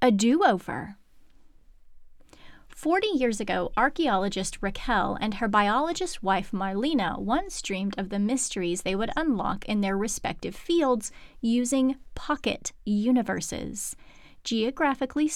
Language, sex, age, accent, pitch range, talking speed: English, female, 30-49, American, 200-265 Hz, 110 wpm